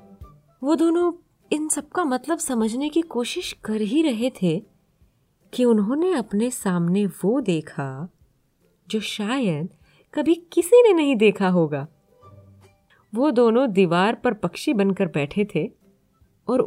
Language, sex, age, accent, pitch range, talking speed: Hindi, female, 20-39, native, 170-280 Hz, 130 wpm